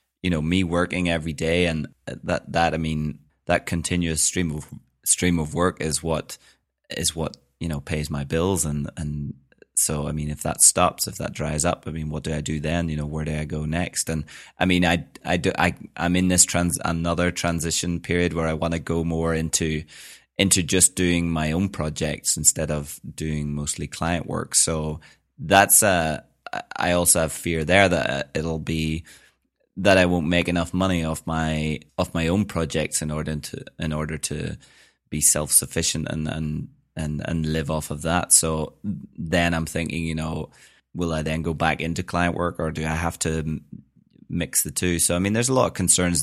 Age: 20-39